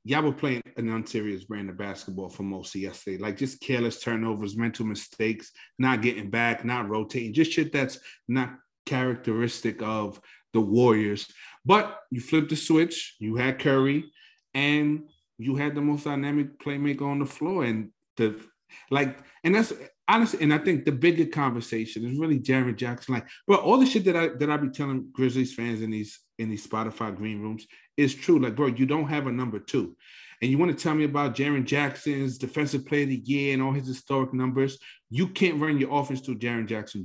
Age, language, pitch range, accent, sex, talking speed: 30-49, English, 115-145 Hz, American, male, 200 wpm